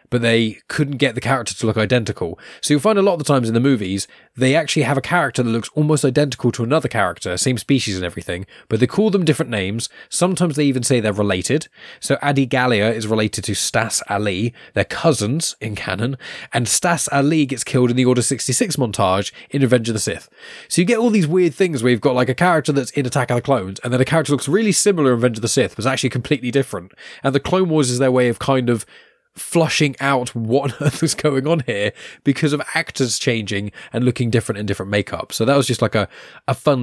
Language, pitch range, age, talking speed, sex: English, 105-140 Hz, 20-39, 240 wpm, male